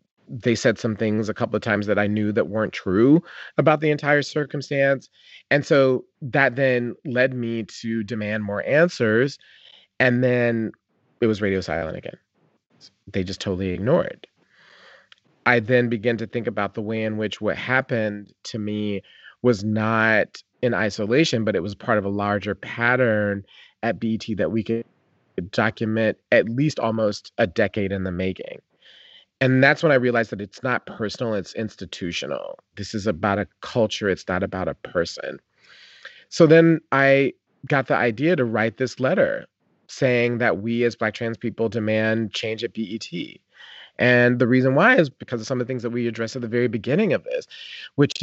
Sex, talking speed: male, 175 wpm